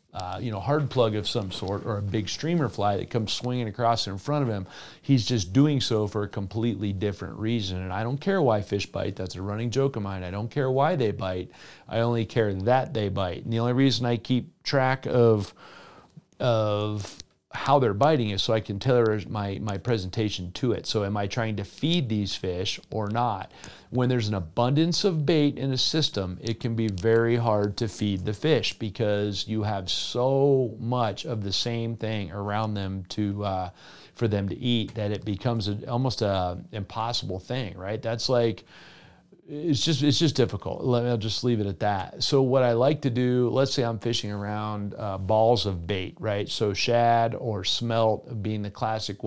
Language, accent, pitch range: English, American, 100-125 Hz